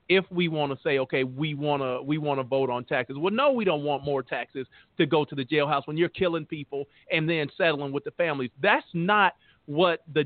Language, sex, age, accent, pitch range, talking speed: English, male, 40-59, American, 140-190 Hz, 240 wpm